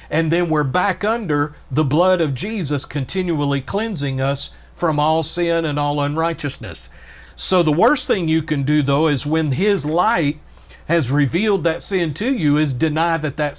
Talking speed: 175 wpm